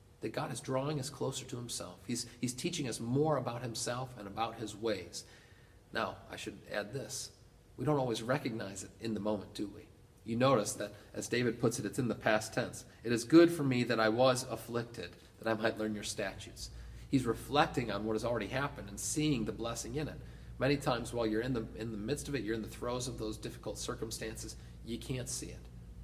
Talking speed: 220 wpm